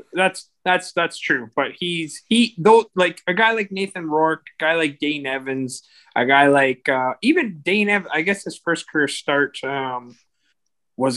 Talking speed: 175 wpm